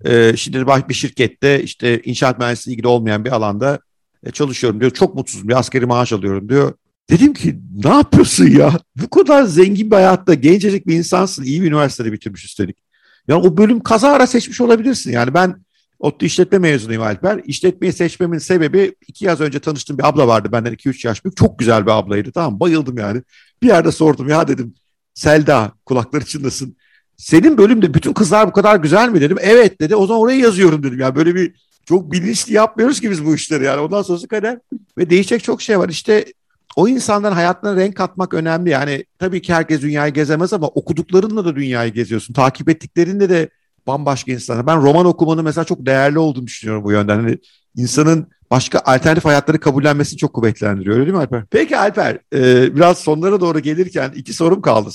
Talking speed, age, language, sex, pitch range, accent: 185 wpm, 50-69, Turkish, male, 130-185 Hz, native